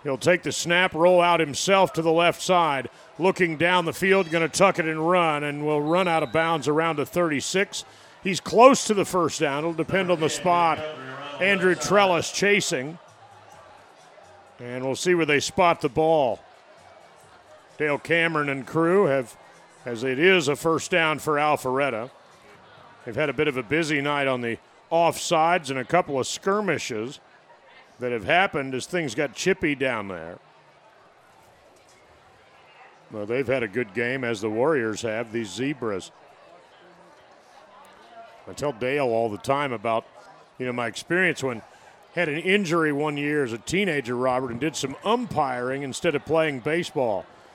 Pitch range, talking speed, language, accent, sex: 130-170 Hz, 165 wpm, English, American, male